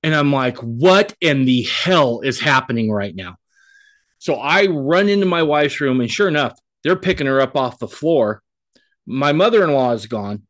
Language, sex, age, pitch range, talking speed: English, male, 30-49, 125-165 Hz, 185 wpm